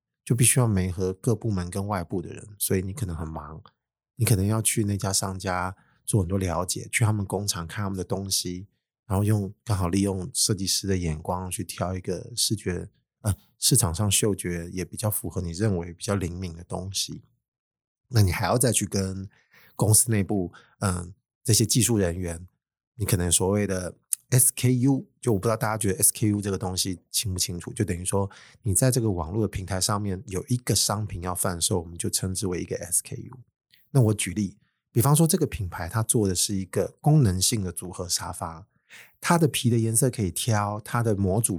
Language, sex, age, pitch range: Chinese, male, 20-39, 95-115 Hz